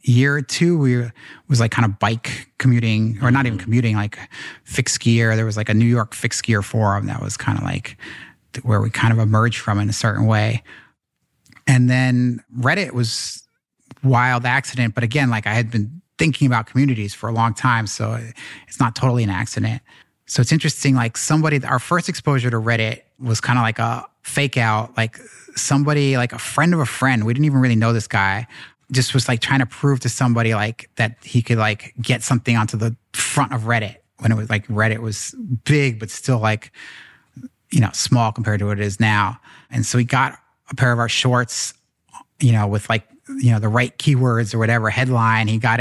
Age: 30-49